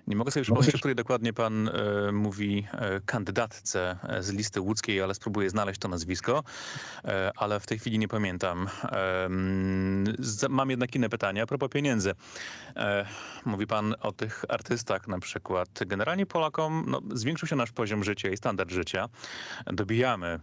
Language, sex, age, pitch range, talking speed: Polish, male, 30-49, 100-125 Hz, 165 wpm